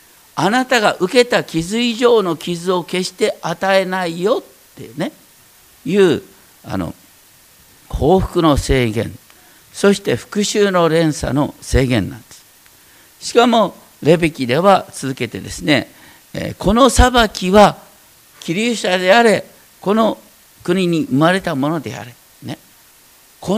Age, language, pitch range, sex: 50-69, Japanese, 160-225 Hz, male